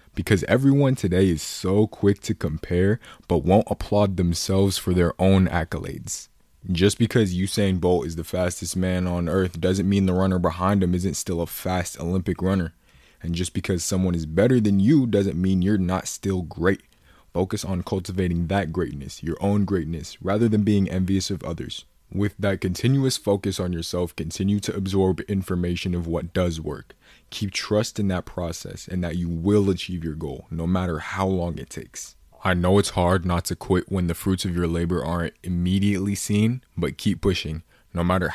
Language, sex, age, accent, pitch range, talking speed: English, male, 20-39, American, 85-100 Hz, 185 wpm